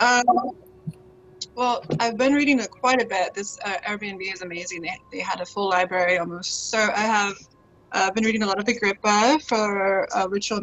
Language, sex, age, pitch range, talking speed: English, female, 20-39, 175-210 Hz, 190 wpm